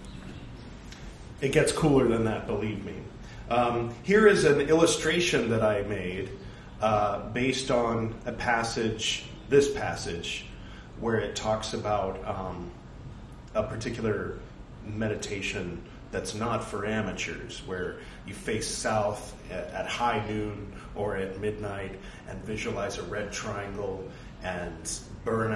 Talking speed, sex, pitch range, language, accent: 120 wpm, male, 100-115 Hz, English, American